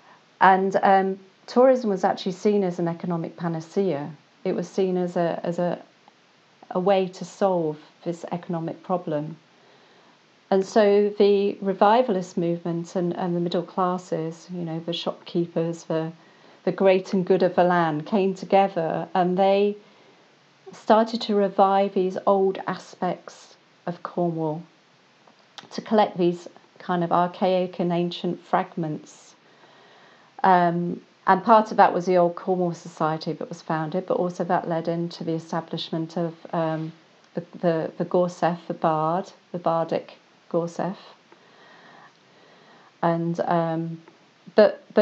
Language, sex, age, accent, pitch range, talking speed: English, female, 40-59, British, 170-195 Hz, 130 wpm